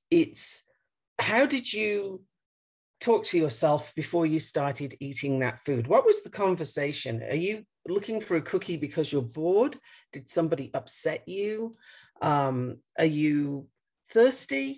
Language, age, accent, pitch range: English, 50-69, British, 145-215 Hz